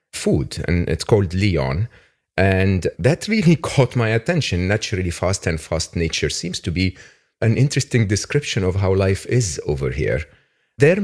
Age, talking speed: 40-59, 160 wpm